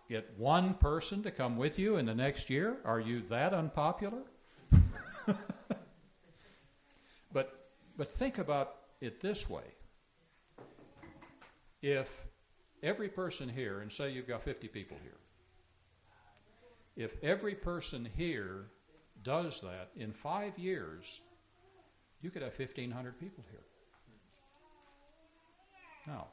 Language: English